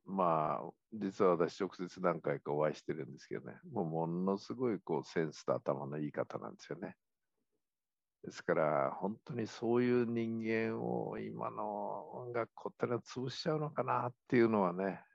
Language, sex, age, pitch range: Japanese, male, 50-69, 90-120 Hz